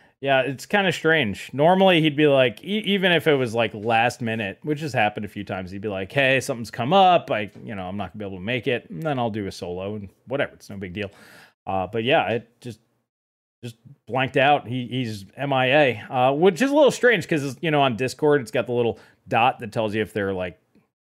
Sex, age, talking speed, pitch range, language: male, 20-39, 245 wpm, 110-145 Hz, English